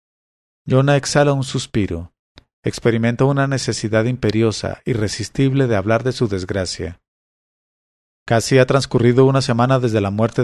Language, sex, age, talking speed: English, male, 40-59, 125 wpm